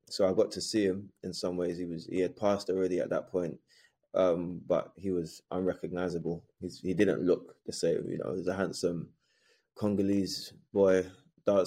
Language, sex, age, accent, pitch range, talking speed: English, male, 20-39, British, 85-95 Hz, 195 wpm